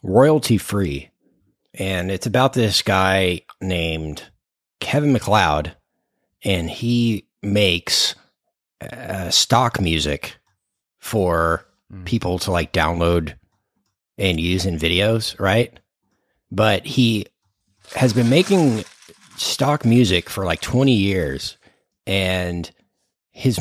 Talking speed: 100 wpm